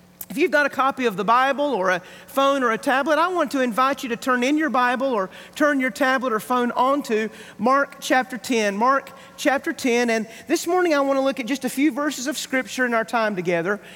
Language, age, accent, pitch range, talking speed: English, 40-59, American, 220-290 Hz, 235 wpm